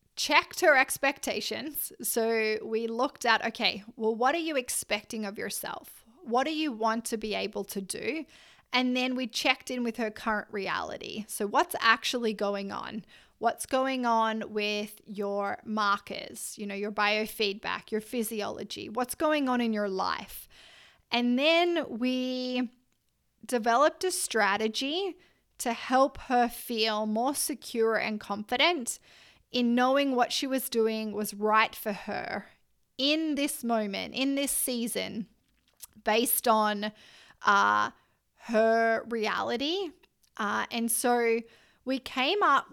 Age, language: 20-39, English